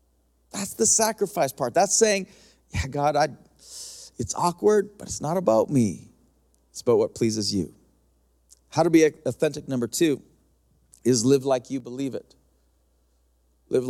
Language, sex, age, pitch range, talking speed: English, male, 40-59, 105-135 Hz, 145 wpm